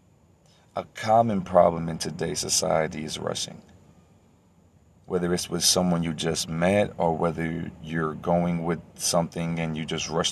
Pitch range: 80-95 Hz